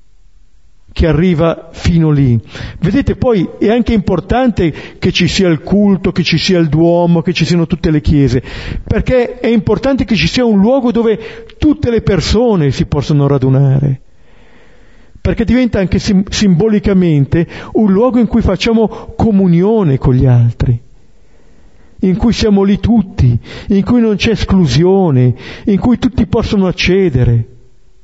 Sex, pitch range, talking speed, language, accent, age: male, 125-205 Hz, 145 wpm, Italian, native, 50-69